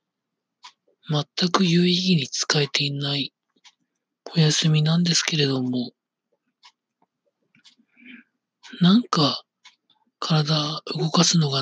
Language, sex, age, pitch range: Japanese, male, 40-59, 140-180 Hz